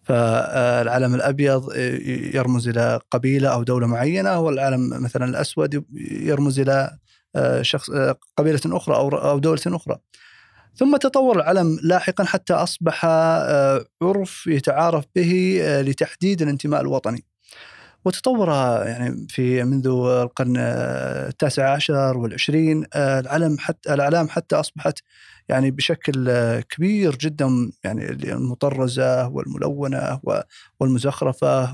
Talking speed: 100 wpm